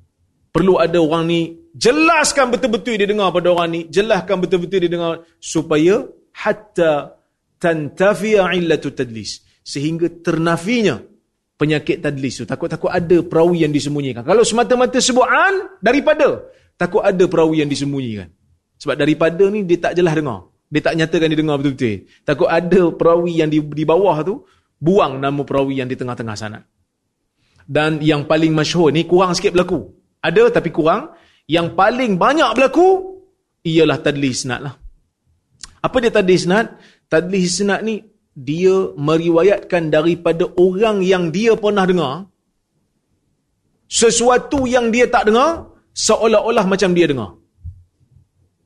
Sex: male